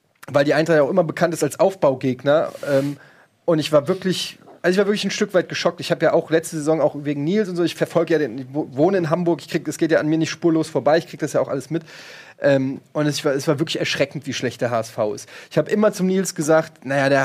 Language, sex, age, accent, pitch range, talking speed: German, male, 30-49, German, 150-190 Hz, 255 wpm